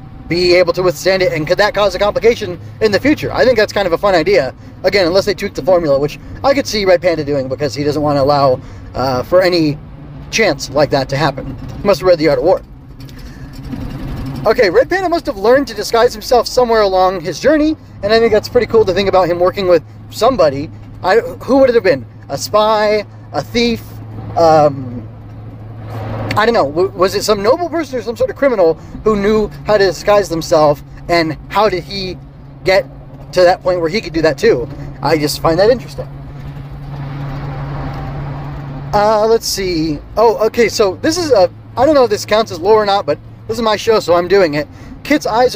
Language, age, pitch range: English, 30-49, 140-205 Hz